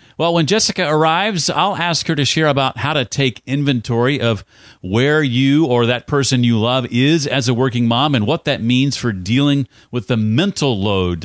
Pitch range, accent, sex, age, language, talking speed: 110-140 Hz, American, male, 40-59, English, 200 wpm